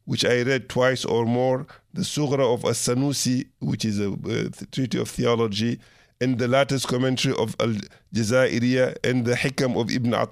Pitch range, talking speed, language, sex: 115-135 Hz, 165 wpm, English, male